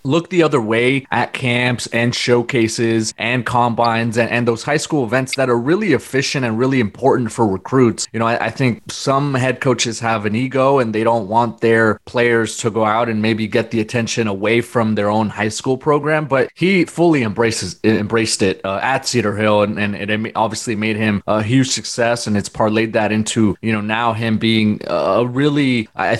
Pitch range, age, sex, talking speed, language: 110-130 Hz, 20-39, male, 205 wpm, English